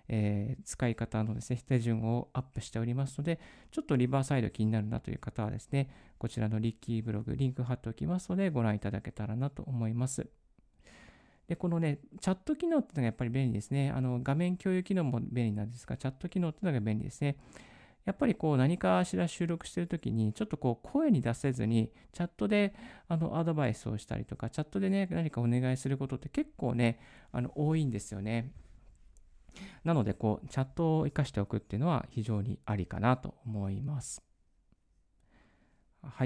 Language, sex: Japanese, male